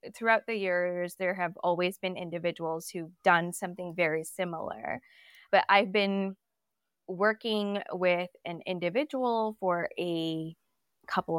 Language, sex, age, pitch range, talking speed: English, female, 20-39, 180-220 Hz, 120 wpm